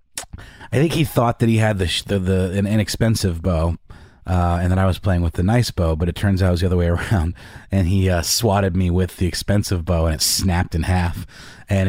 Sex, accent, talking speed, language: male, American, 245 wpm, English